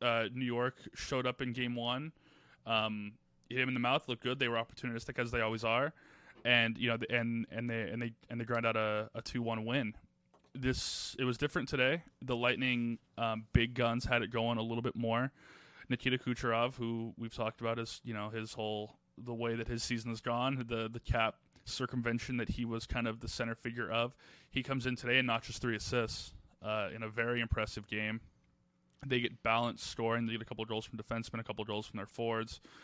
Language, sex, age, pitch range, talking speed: English, male, 20-39, 110-125 Hz, 220 wpm